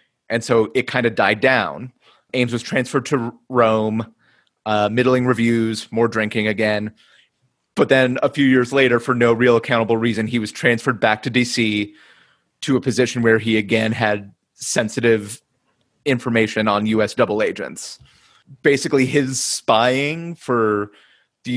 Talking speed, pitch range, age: 145 wpm, 110-130 Hz, 30-49